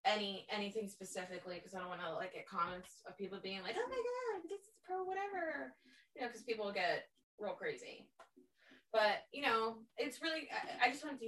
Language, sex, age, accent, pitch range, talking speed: English, female, 20-39, American, 195-270 Hz, 205 wpm